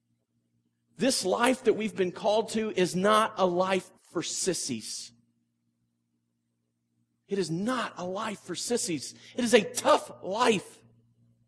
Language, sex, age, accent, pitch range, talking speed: English, male, 40-59, American, 105-155 Hz, 130 wpm